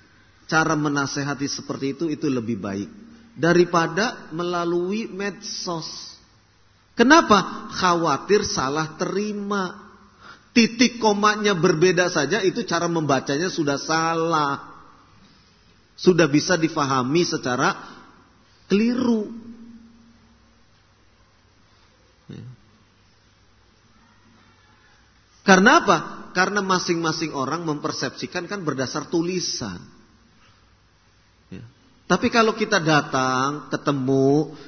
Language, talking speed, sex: Indonesian, 75 wpm, male